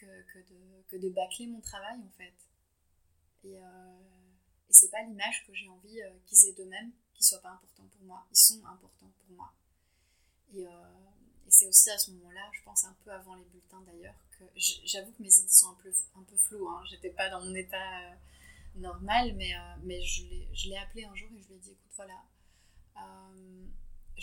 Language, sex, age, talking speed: French, female, 20-39, 225 wpm